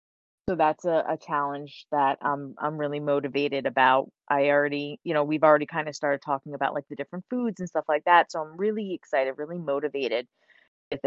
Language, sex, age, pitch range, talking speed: English, female, 20-39, 145-165 Hz, 205 wpm